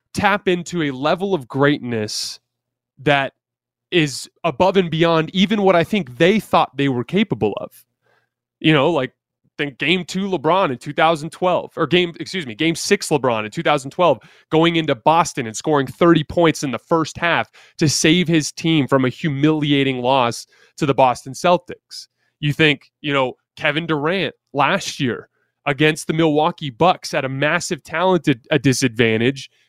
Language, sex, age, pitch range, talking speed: English, male, 20-39, 140-185 Hz, 160 wpm